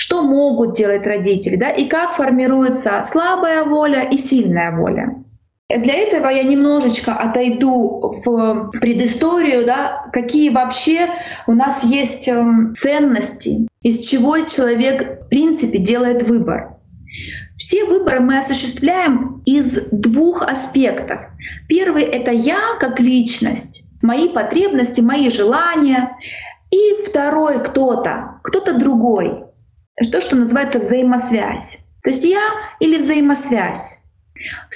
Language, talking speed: Russian, 115 wpm